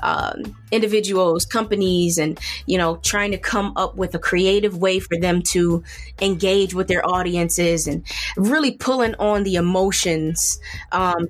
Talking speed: 150 wpm